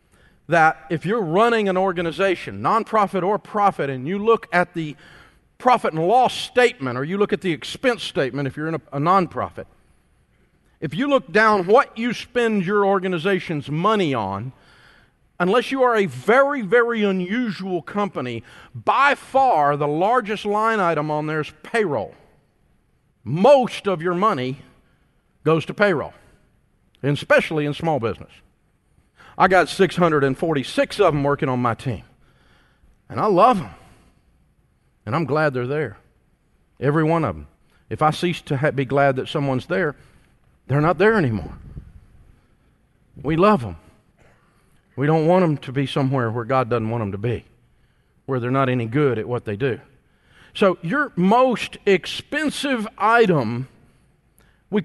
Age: 50-69